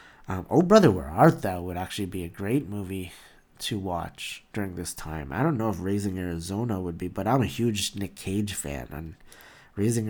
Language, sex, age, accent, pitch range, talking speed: English, male, 30-49, American, 90-115 Hz, 200 wpm